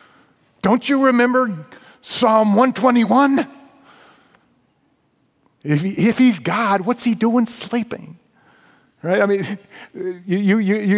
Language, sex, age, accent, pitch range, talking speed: English, male, 40-59, American, 160-225 Hz, 105 wpm